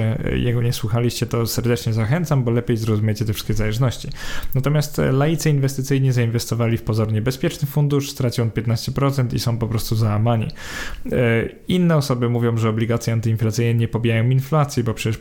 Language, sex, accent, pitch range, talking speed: Polish, male, native, 115-135 Hz, 155 wpm